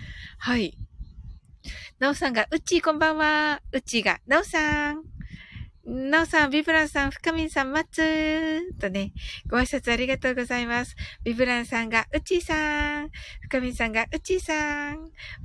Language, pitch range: Japanese, 245-345 Hz